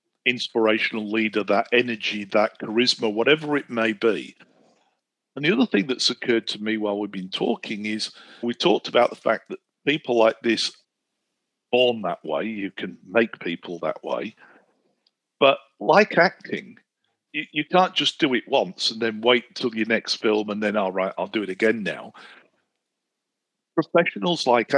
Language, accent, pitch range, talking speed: English, British, 110-135 Hz, 165 wpm